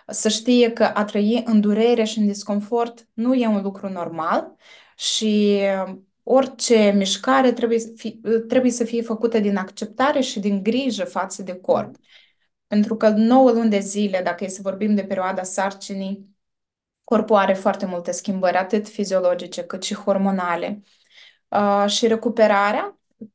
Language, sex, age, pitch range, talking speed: Romanian, female, 20-39, 195-235 Hz, 150 wpm